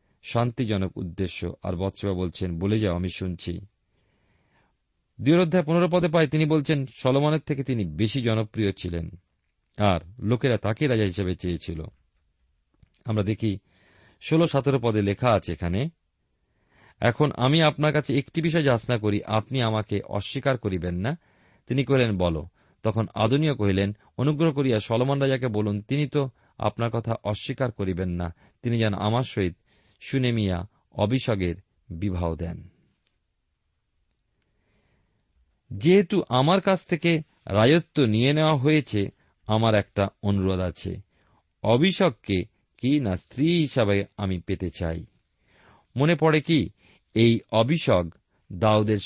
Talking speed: 120 wpm